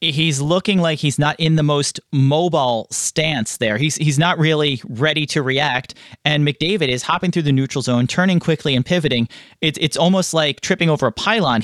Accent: American